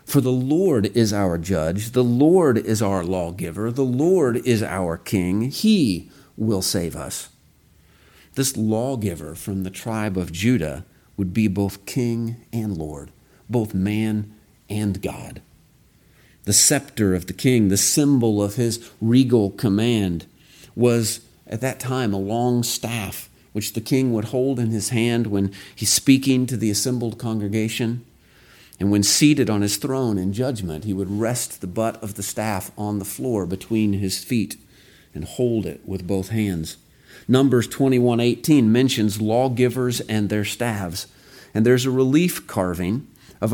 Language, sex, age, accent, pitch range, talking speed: English, male, 40-59, American, 100-125 Hz, 155 wpm